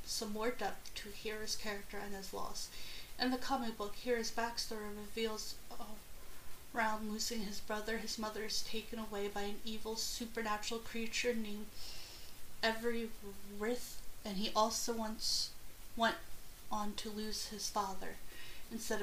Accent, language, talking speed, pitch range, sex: American, English, 140 wpm, 210-230 Hz, female